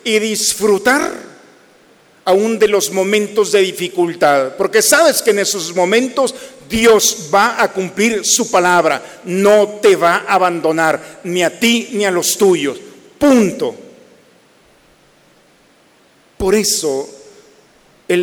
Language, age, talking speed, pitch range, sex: Spanish, 50-69, 120 wpm, 175-225 Hz, male